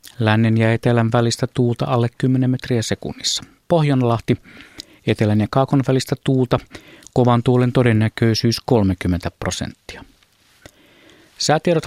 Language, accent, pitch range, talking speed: Finnish, native, 110-135 Hz, 105 wpm